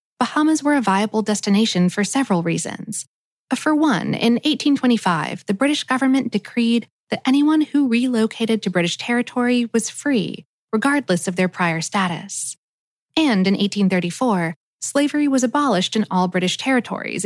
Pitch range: 190-265 Hz